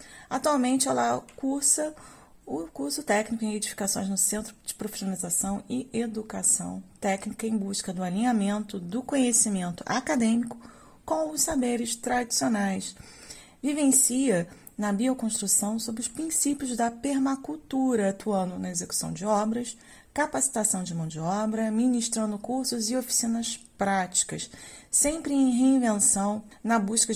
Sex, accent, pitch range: female, Brazilian, 195-250 Hz